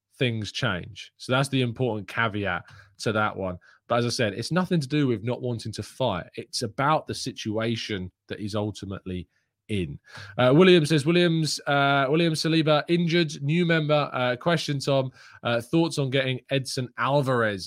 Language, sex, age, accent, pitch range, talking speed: English, male, 20-39, British, 110-135 Hz, 170 wpm